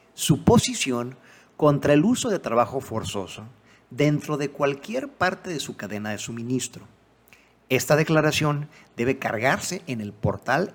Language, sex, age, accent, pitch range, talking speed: Spanish, male, 50-69, Mexican, 120-185 Hz, 135 wpm